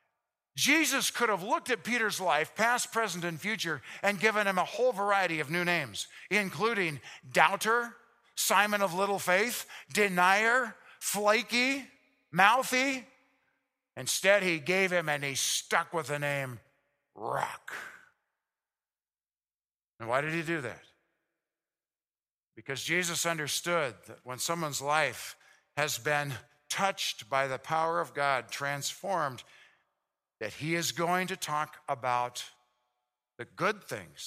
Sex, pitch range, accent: male, 135-200 Hz, American